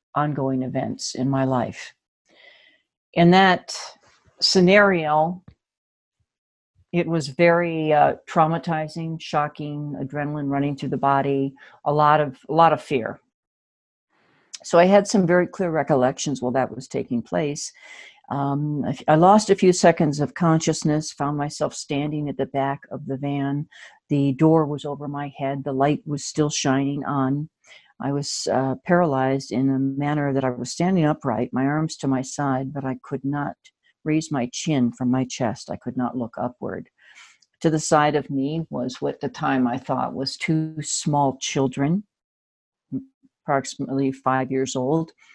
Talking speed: 155 wpm